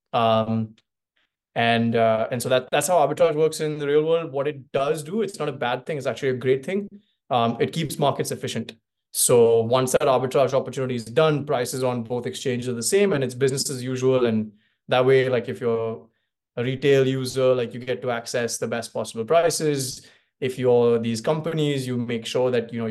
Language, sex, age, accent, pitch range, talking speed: English, male, 20-39, Indian, 115-145 Hz, 210 wpm